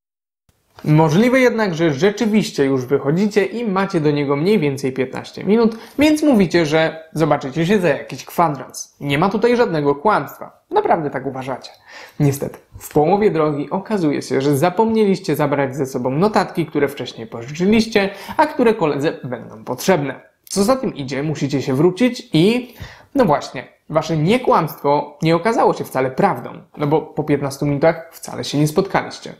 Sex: male